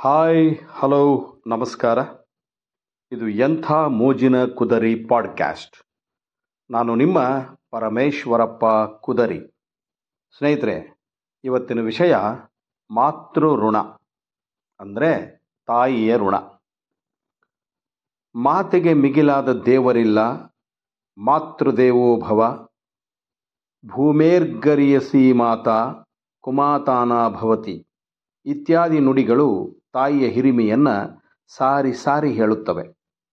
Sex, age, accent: male, 50-69, native